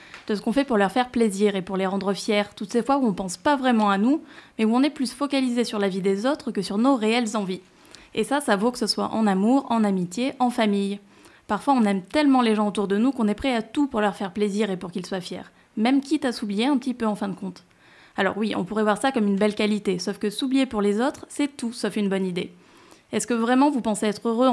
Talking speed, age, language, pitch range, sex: 280 wpm, 20-39, French, 205-255 Hz, female